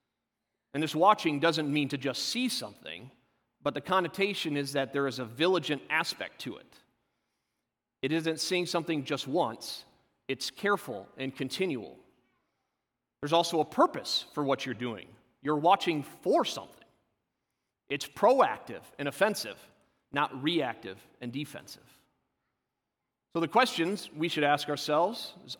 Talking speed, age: 140 wpm, 40-59